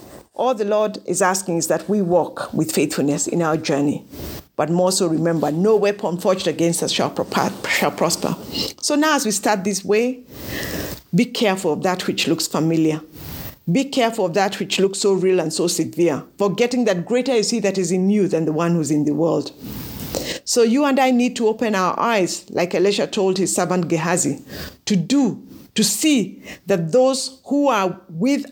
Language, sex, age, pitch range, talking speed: English, female, 50-69, 170-225 Hz, 190 wpm